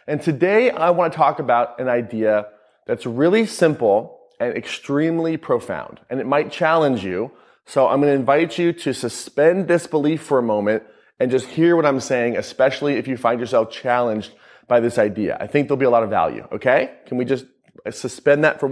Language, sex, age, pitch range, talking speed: English, male, 30-49, 125-155 Hz, 200 wpm